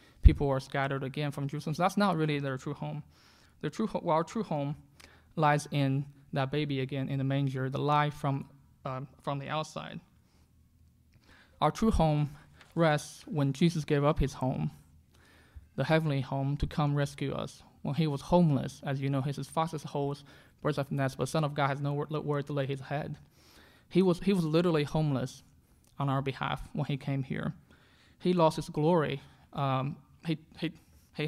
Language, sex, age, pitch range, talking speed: English, male, 20-39, 135-155 Hz, 190 wpm